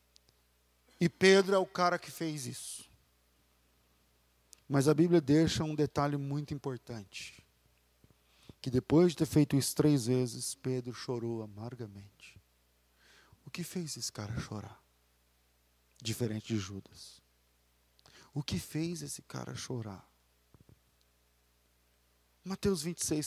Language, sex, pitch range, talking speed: Portuguese, male, 105-160 Hz, 115 wpm